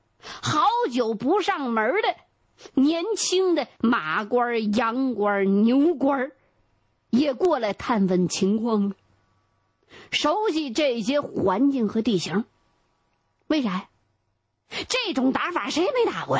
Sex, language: female, Chinese